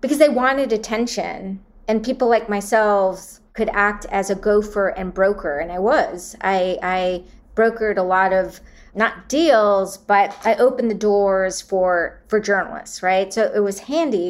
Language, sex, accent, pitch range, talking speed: English, female, American, 190-230 Hz, 165 wpm